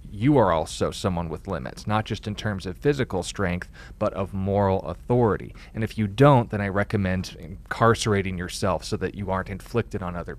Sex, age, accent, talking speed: male, 30-49, American, 190 wpm